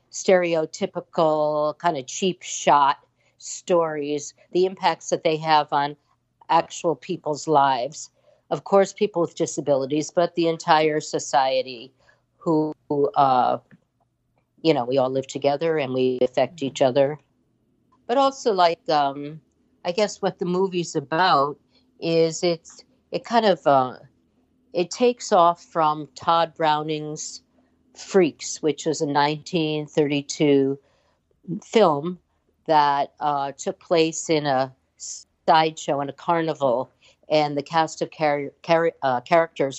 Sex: female